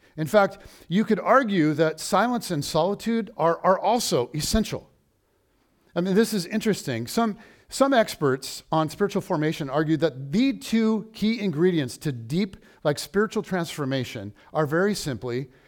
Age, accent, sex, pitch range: 50-69, American, male, 145-200 Hz